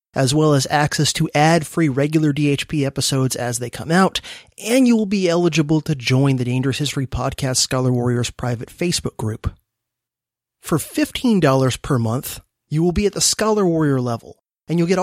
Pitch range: 135-175 Hz